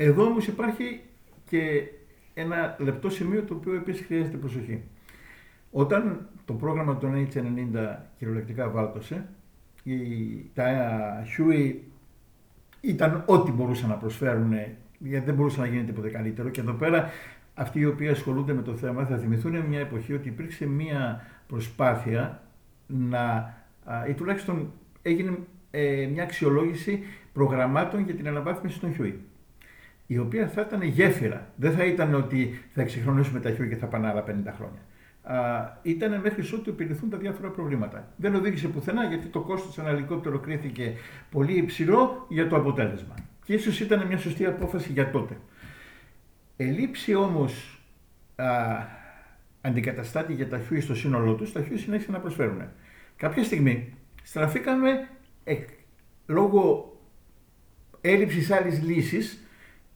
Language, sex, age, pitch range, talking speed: Greek, male, 60-79, 125-180 Hz, 130 wpm